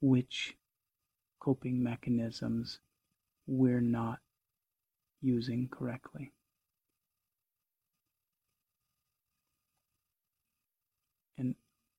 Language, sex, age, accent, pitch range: English, male, 40-59, American, 105-130 Hz